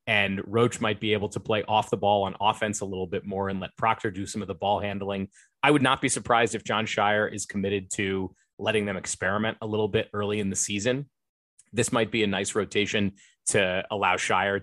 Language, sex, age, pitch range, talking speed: English, male, 30-49, 95-115 Hz, 225 wpm